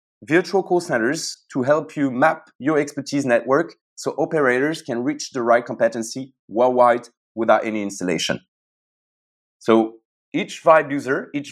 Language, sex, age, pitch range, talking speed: English, male, 30-49, 115-145 Hz, 135 wpm